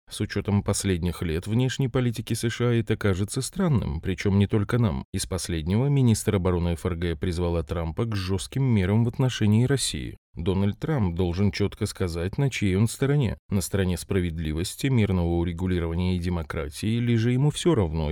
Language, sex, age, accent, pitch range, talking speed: Russian, male, 30-49, native, 90-125 Hz, 160 wpm